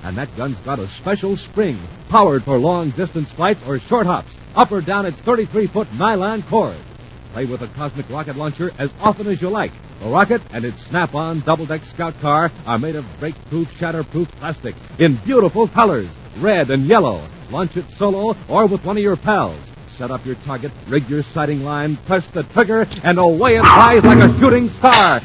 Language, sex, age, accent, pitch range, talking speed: English, male, 50-69, American, 145-220 Hz, 190 wpm